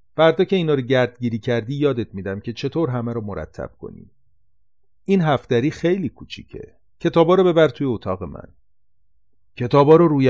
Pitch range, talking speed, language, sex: 100-160 Hz, 155 wpm, Persian, male